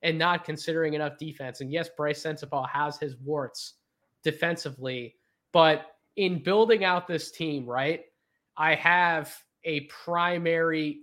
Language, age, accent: English, 20-39, American